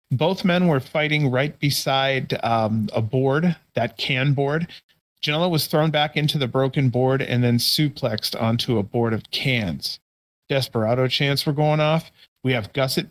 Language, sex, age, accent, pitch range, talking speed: English, male, 40-59, American, 125-150 Hz, 165 wpm